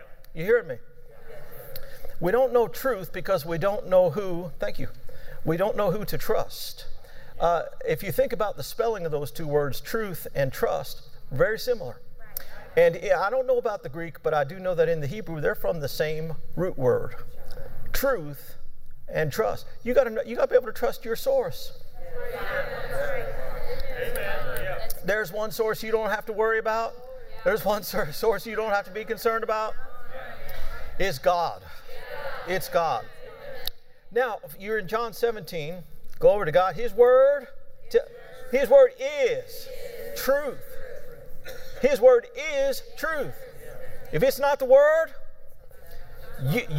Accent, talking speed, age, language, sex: American, 155 wpm, 50-69, English, male